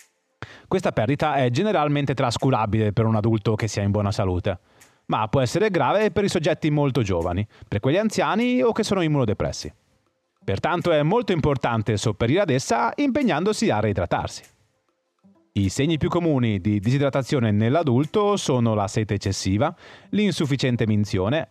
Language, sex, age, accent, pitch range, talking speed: Italian, male, 30-49, native, 110-155 Hz, 145 wpm